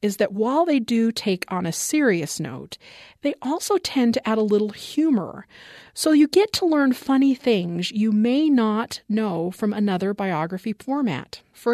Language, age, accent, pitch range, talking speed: English, 40-59, American, 190-270 Hz, 175 wpm